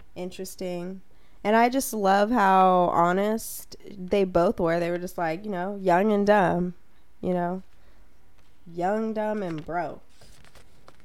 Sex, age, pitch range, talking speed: female, 20-39, 175-210 Hz, 135 wpm